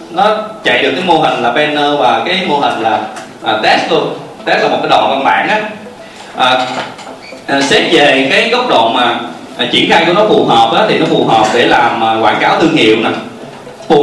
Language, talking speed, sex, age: Vietnamese, 210 wpm, male, 20-39